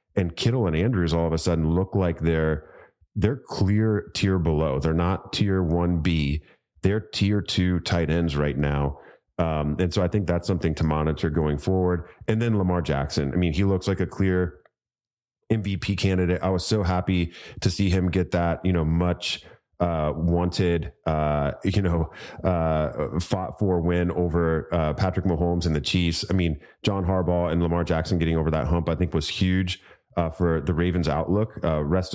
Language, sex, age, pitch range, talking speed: English, male, 30-49, 80-95 Hz, 190 wpm